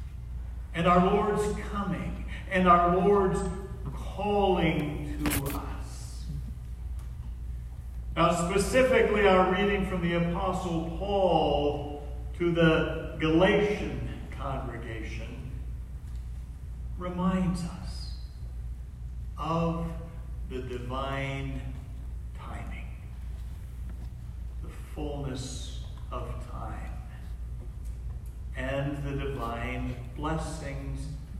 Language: English